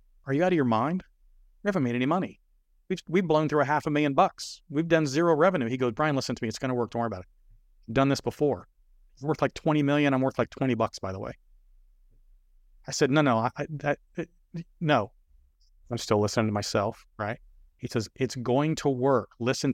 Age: 30-49